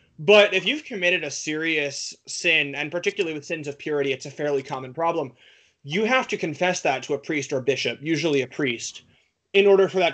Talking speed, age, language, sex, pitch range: 205 wpm, 30-49, English, male, 145-195 Hz